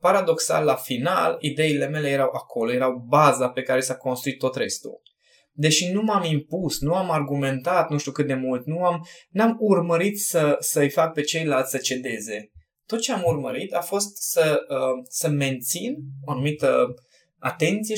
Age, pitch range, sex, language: 20-39, 130-175 Hz, male, Romanian